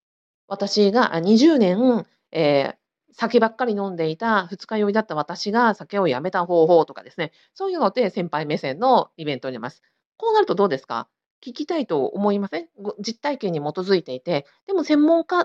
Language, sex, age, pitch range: Japanese, female, 40-59, 165-260 Hz